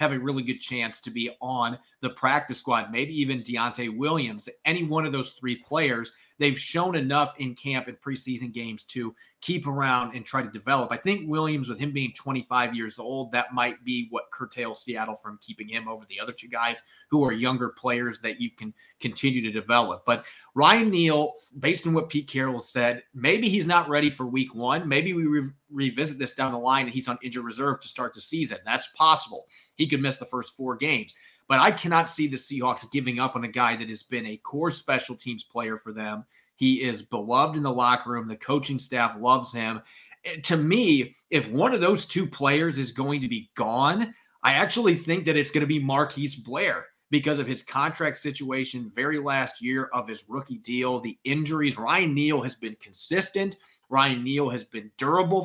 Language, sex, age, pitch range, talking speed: English, male, 30-49, 120-150 Hz, 205 wpm